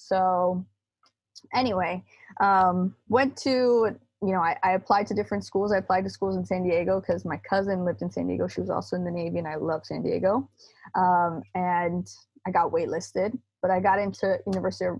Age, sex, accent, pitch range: 20-39, female, American, 175-220 Hz